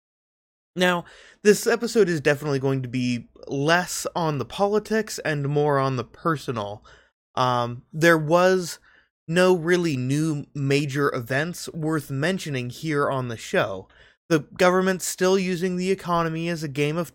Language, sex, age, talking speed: English, male, 20-39, 145 wpm